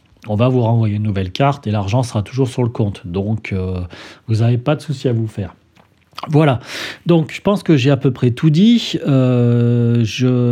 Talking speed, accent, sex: 210 wpm, French, male